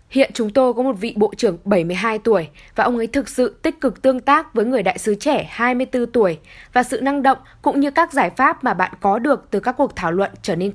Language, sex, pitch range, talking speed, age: Vietnamese, female, 210-265 Hz, 255 wpm, 10-29